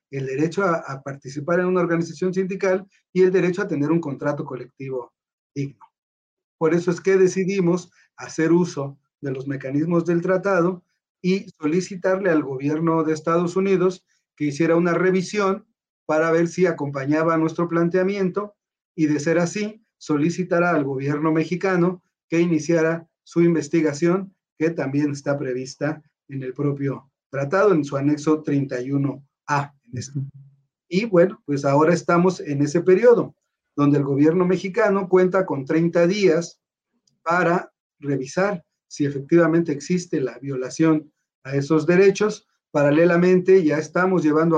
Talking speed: 135 wpm